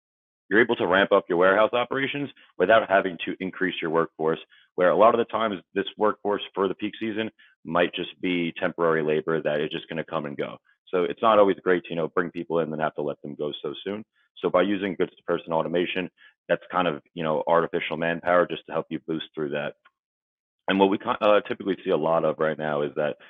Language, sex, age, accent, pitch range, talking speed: English, male, 30-49, American, 80-105 Hz, 240 wpm